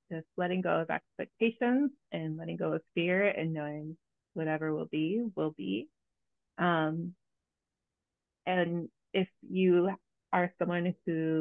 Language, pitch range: English, 165-205 Hz